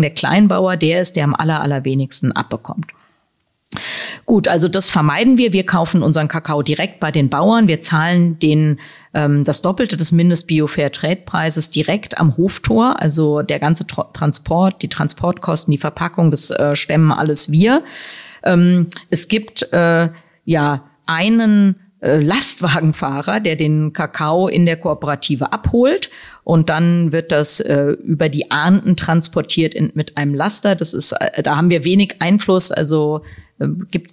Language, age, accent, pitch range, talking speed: German, 40-59, German, 150-175 Hz, 150 wpm